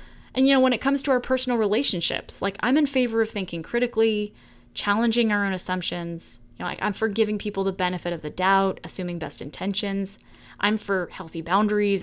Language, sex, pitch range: English, female, 175-225 Hz